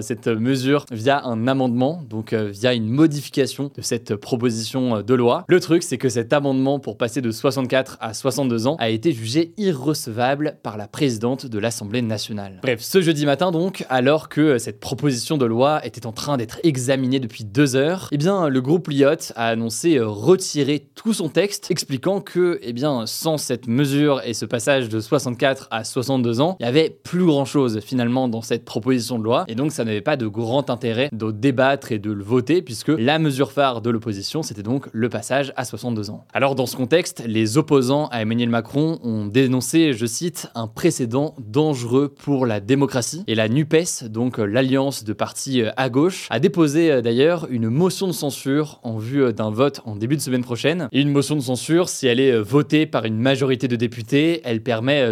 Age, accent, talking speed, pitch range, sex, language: 20-39, French, 200 wpm, 115-145 Hz, male, French